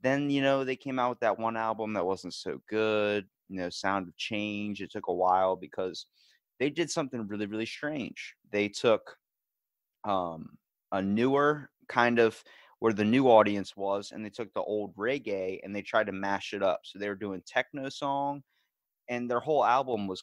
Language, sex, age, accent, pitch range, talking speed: English, male, 30-49, American, 100-125 Hz, 195 wpm